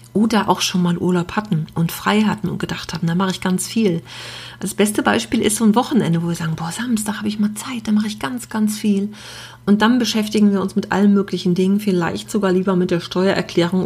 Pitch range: 170-210 Hz